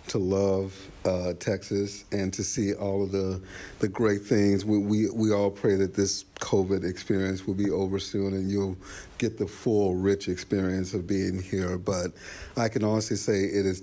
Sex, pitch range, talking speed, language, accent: male, 95-105 Hz, 185 wpm, English, American